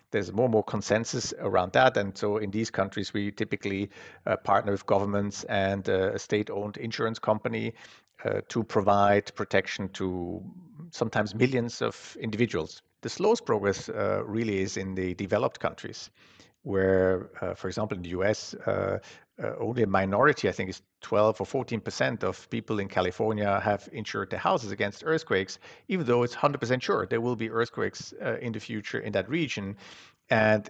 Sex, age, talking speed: male, 50-69, 170 wpm